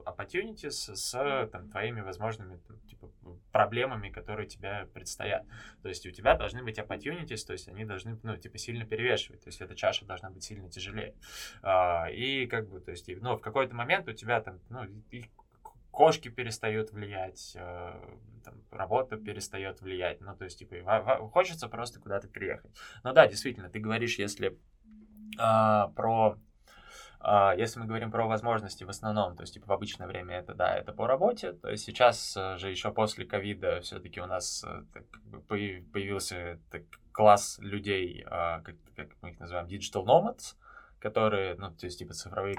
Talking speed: 160 wpm